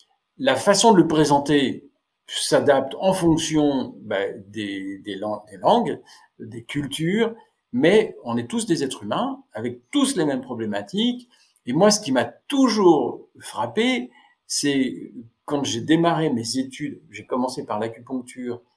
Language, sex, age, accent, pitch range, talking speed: French, male, 50-69, French, 135-210 Hz, 140 wpm